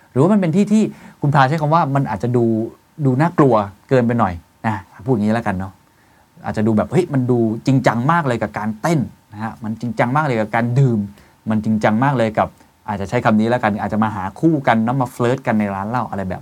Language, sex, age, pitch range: Thai, male, 20-39, 105-135 Hz